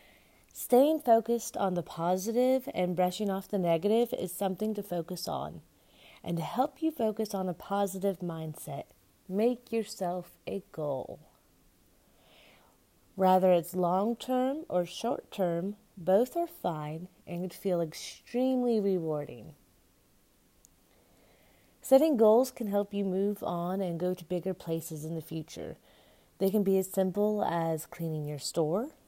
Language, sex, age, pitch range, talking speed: English, female, 30-49, 165-210 Hz, 140 wpm